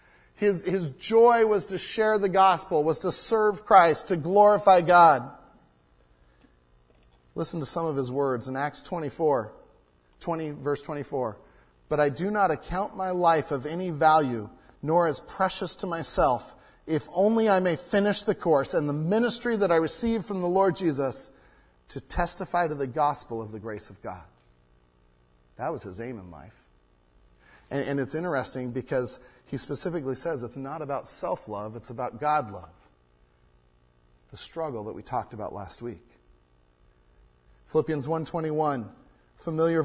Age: 40-59